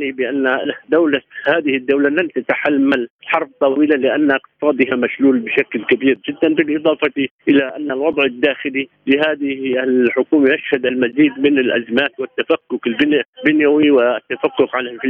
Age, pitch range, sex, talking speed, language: 50-69, 130-150 Hz, male, 115 wpm, Arabic